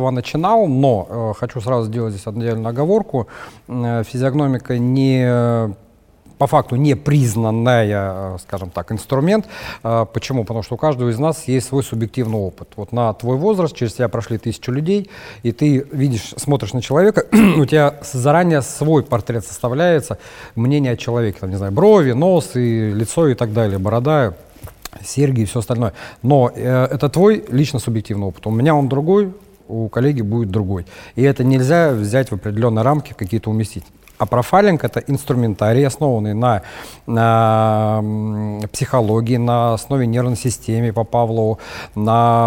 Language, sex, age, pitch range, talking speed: Russian, male, 40-59, 110-140 Hz, 155 wpm